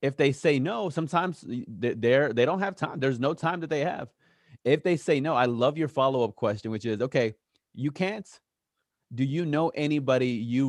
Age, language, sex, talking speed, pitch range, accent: 30-49, English, male, 200 wpm, 115-135 Hz, American